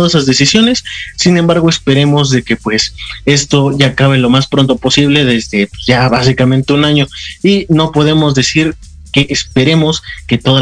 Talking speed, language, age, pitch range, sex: 160 wpm, Spanish, 30-49, 125-160 Hz, male